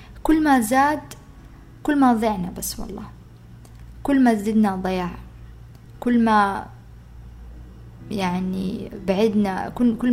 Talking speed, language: 105 wpm, Arabic